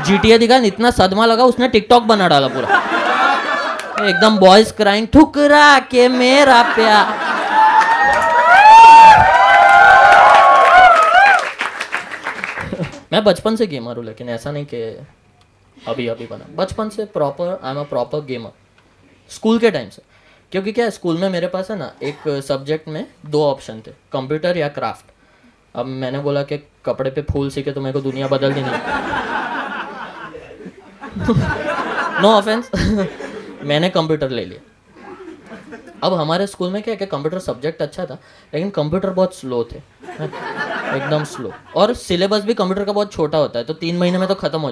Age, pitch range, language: 20-39, 145-215 Hz, Gujarati